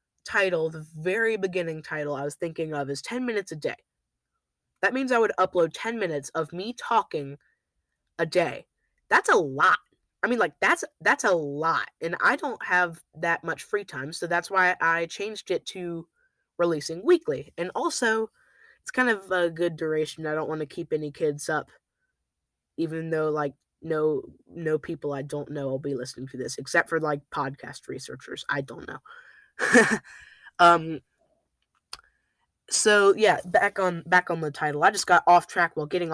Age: 20-39